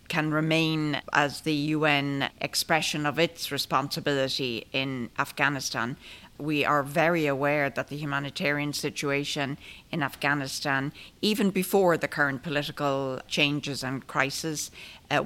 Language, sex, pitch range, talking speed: English, female, 145-160 Hz, 120 wpm